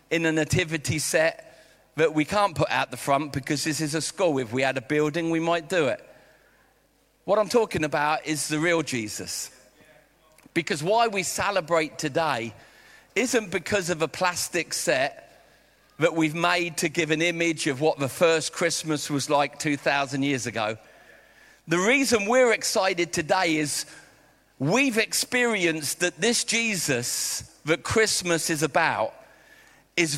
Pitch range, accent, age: 140-180 Hz, British, 40-59